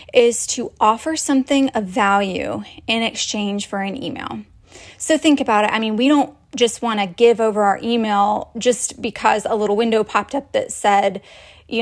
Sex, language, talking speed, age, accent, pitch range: female, English, 185 wpm, 20-39, American, 210-250 Hz